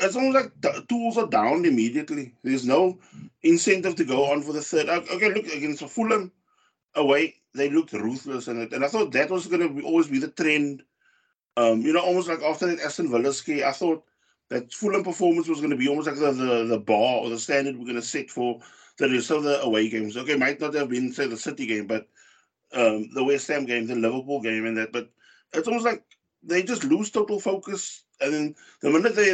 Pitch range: 130-195 Hz